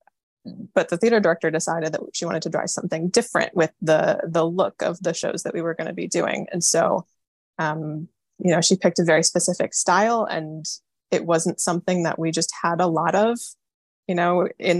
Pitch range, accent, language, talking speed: 165-195 Hz, American, English, 205 wpm